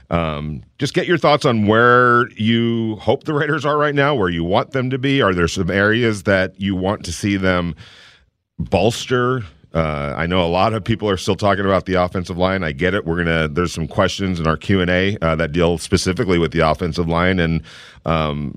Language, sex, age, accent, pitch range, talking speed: English, male, 40-59, American, 85-105 Hz, 220 wpm